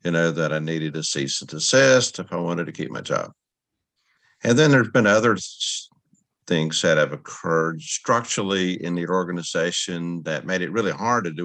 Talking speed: 190 wpm